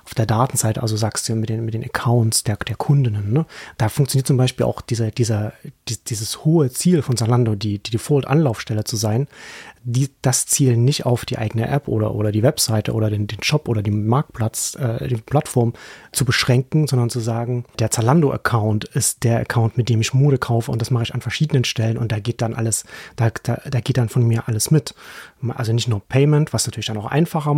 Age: 30-49